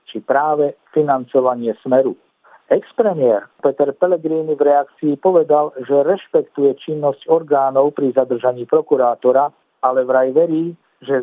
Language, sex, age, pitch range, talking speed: Slovak, male, 50-69, 130-160 Hz, 110 wpm